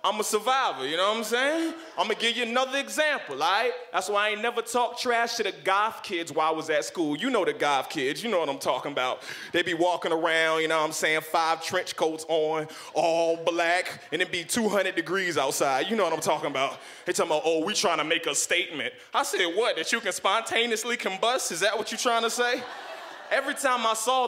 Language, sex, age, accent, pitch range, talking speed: English, male, 20-39, American, 175-265 Hz, 245 wpm